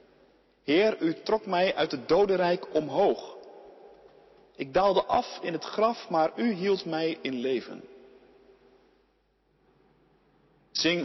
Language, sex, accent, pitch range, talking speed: Dutch, male, Dutch, 160-225 Hz, 115 wpm